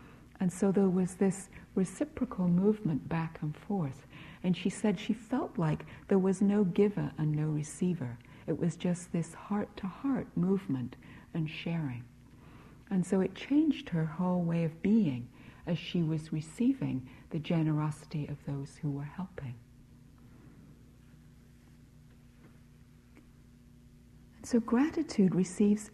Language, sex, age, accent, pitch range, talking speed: English, female, 60-79, American, 150-210 Hz, 125 wpm